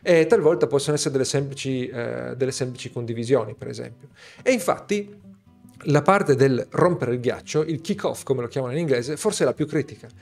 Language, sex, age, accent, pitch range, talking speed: Italian, male, 40-59, native, 125-165 Hz, 195 wpm